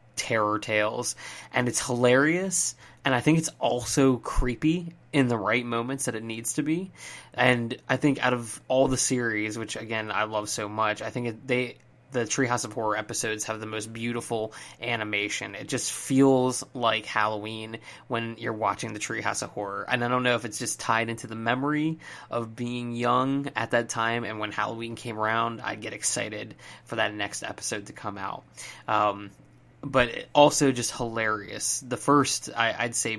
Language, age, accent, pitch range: English, 20-39, American, 110-130 Hz